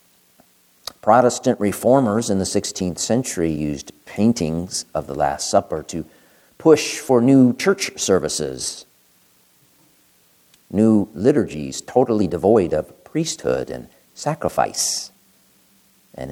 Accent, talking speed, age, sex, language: American, 100 wpm, 50-69, male, English